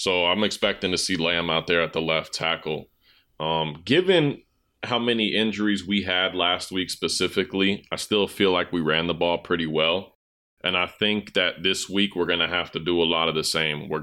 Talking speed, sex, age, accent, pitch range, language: 215 wpm, male, 30-49, American, 85-100 Hz, English